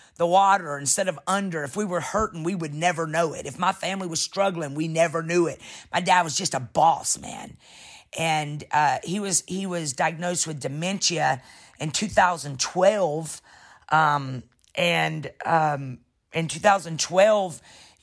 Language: English